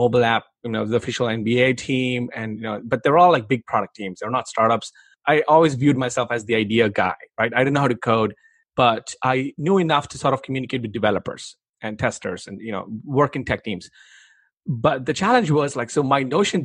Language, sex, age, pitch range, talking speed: English, male, 30-49, 120-150 Hz, 225 wpm